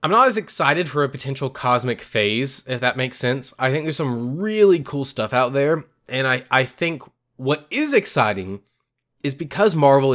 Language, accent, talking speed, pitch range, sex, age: English, American, 190 wpm, 115-145 Hz, male, 20-39